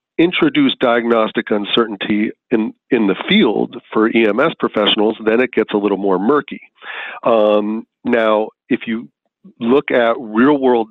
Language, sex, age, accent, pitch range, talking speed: English, male, 40-59, American, 100-115 Hz, 130 wpm